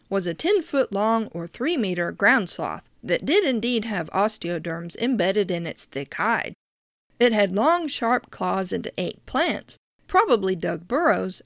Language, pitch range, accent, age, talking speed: English, 180-240 Hz, American, 50-69, 145 wpm